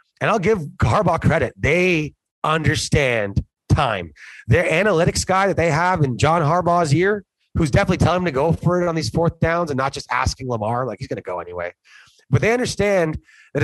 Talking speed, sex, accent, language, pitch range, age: 200 wpm, male, American, English, 125-180 Hz, 30-49